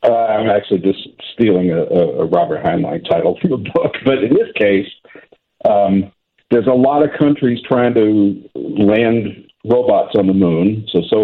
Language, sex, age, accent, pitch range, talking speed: English, male, 50-69, American, 90-115 Hz, 170 wpm